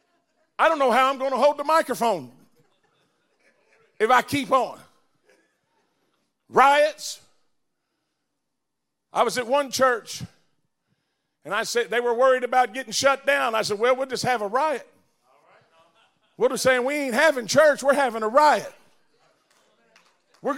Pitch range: 240-290 Hz